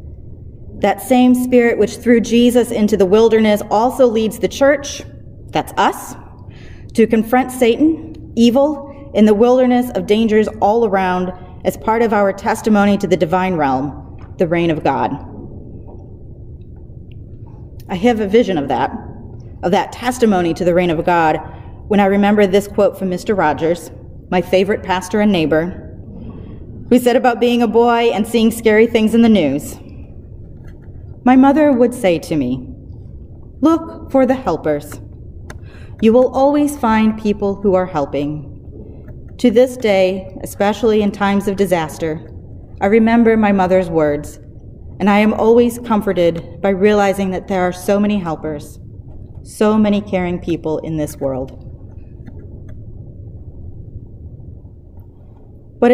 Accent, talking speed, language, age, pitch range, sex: American, 140 wpm, English, 30-49, 145-225 Hz, female